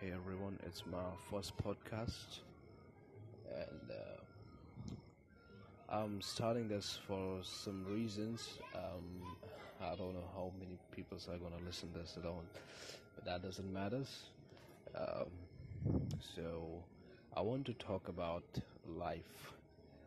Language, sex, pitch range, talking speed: English, male, 90-105 Hz, 120 wpm